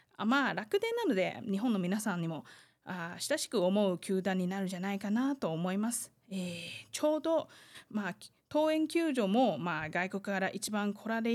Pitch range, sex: 190-250 Hz, female